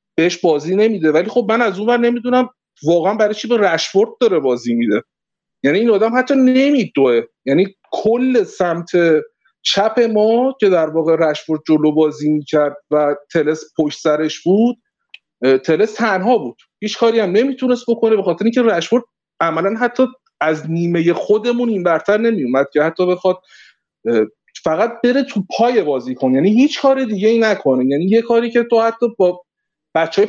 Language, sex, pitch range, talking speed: Persian, male, 165-230 Hz, 165 wpm